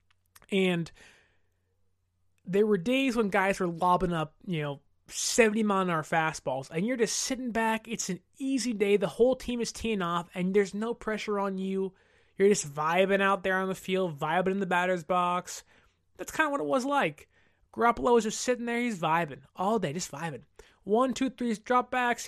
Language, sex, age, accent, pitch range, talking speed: English, male, 20-39, American, 170-230 Hz, 185 wpm